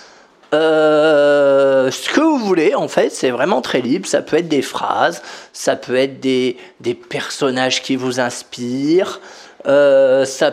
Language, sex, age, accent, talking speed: French, male, 40-59, French, 155 wpm